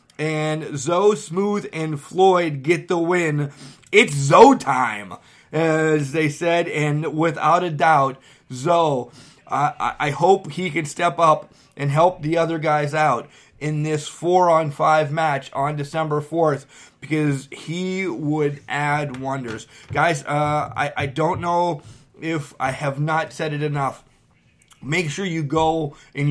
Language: English